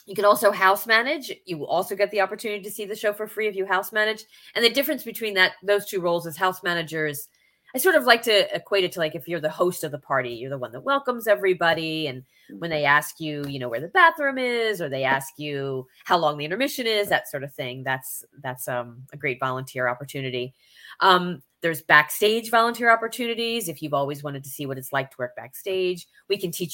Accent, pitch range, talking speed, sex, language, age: American, 150-210 Hz, 235 wpm, female, English, 30-49